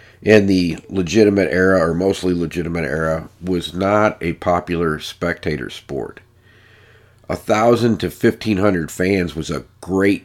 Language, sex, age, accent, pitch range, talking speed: English, male, 50-69, American, 85-105 Hz, 135 wpm